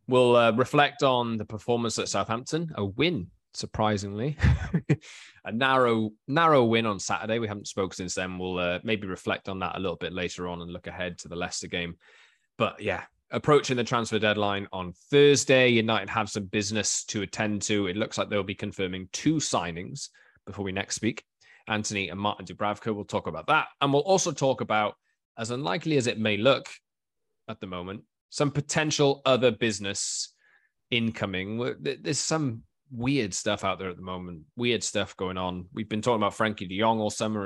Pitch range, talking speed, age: 100-125 Hz, 185 wpm, 20-39